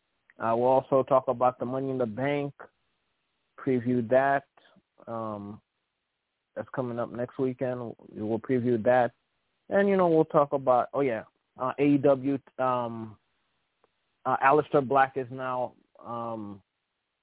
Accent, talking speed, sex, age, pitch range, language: American, 135 wpm, male, 20-39, 115-140 Hz, English